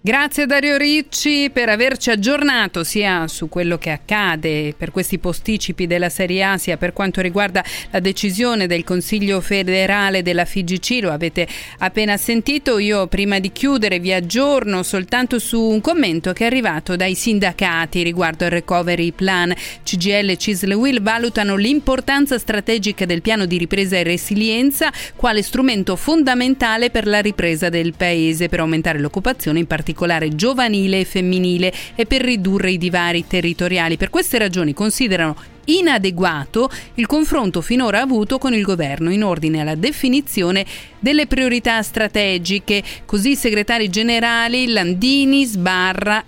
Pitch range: 180-235 Hz